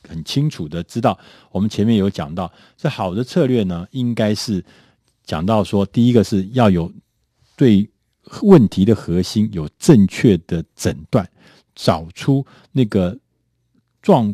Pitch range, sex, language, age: 95-140 Hz, male, Chinese, 50-69